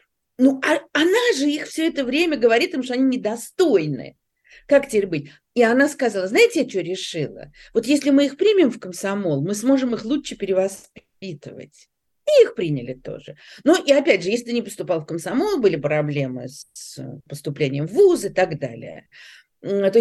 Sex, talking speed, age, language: female, 175 wpm, 40-59, Russian